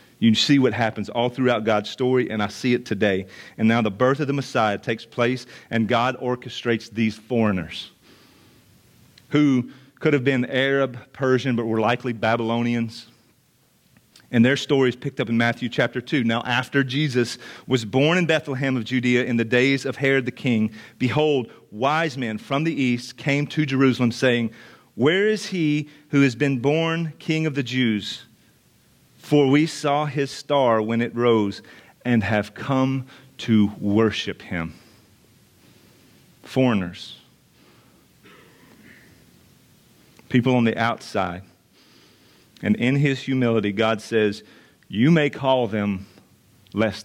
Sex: male